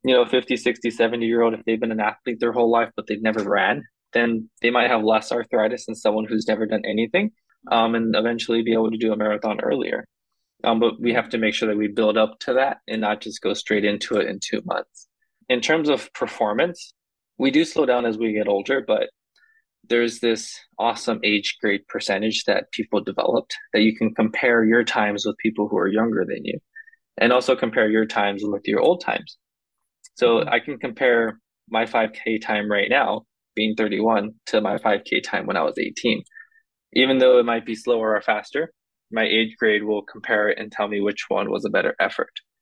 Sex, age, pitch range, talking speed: male, 20-39, 110-120 Hz, 210 wpm